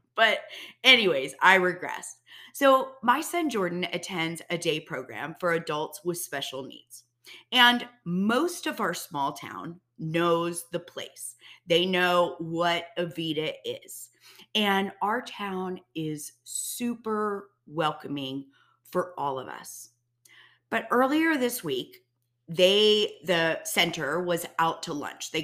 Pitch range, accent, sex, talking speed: 160-210 Hz, American, female, 125 wpm